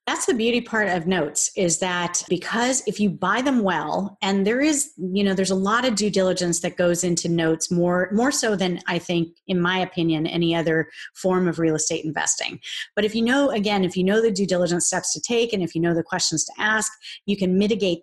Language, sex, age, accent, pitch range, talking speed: English, female, 30-49, American, 175-205 Hz, 230 wpm